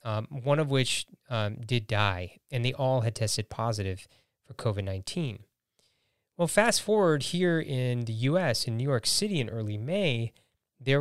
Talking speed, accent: 170 wpm, American